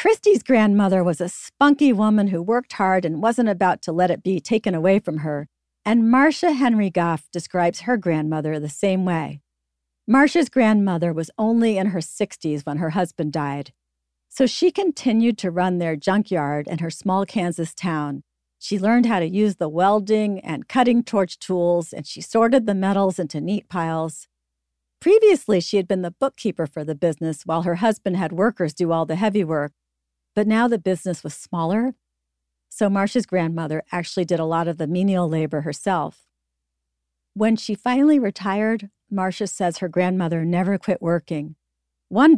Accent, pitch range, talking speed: American, 165-225 Hz, 170 wpm